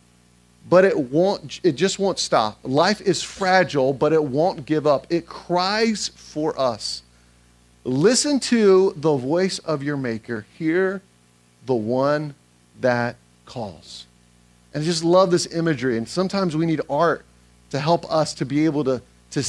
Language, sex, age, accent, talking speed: English, male, 40-59, American, 155 wpm